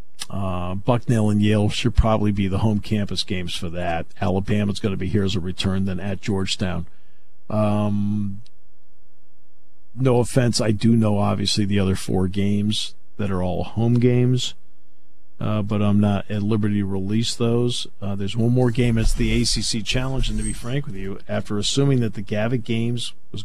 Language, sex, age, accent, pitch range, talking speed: English, male, 50-69, American, 95-120 Hz, 180 wpm